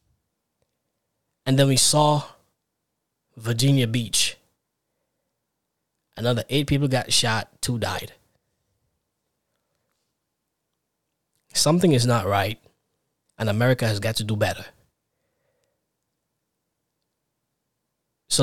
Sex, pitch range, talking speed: male, 115-150 Hz, 80 wpm